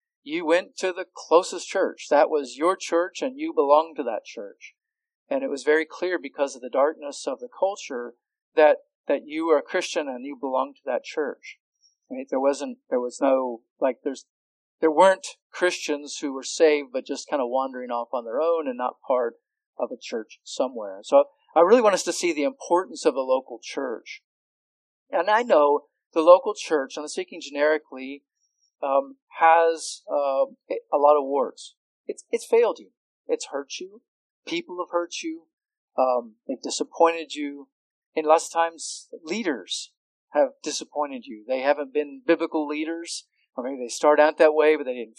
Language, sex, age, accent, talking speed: English, male, 50-69, American, 185 wpm